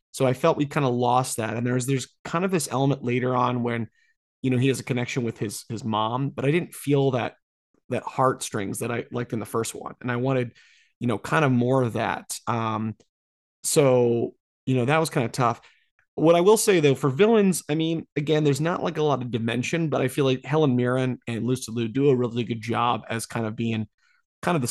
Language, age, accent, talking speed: English, 30-49, American, 240 wpm